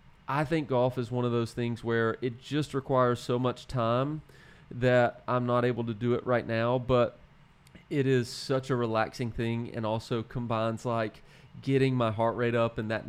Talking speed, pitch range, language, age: 195 wpm, 115-130 Hz, English, 30-49